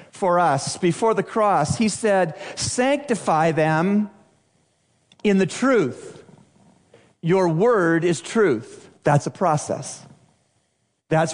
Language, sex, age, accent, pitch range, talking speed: English, male, 50-69, American, 150-200 Hz, 105 wpm